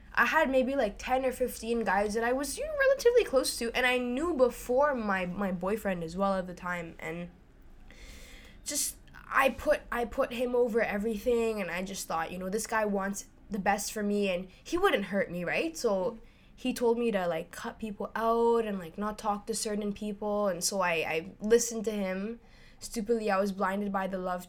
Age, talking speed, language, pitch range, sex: 10-29, 205 wpm, English, 190-235 Hz, female